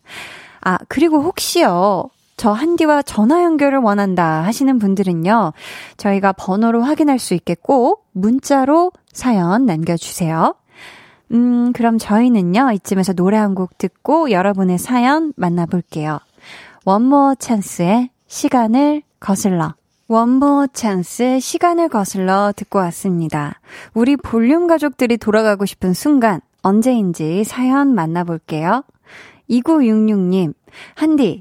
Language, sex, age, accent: Korean, female, 20-39, native